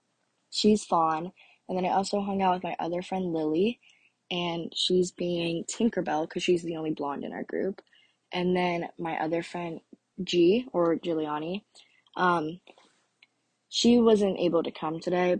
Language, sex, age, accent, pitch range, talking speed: English, female, 20-39, American, 170-205 Hz, 155 wpm